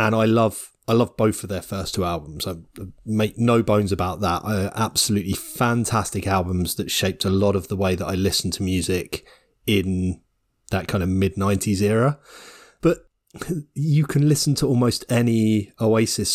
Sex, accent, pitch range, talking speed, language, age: male, British, 95-115 Hz, 175 wpm, English, 30-49